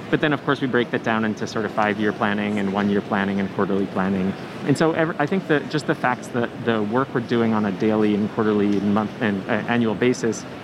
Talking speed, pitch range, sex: 250 wpm, 105-125 Hz, male